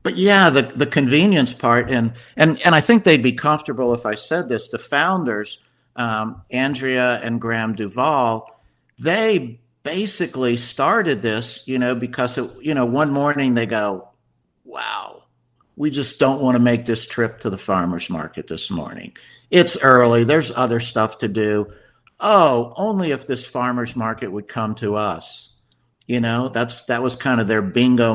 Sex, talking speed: male, 170 wpm